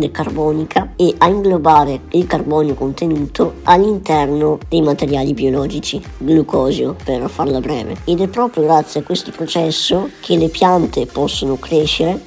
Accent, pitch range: native, 145-165 Hz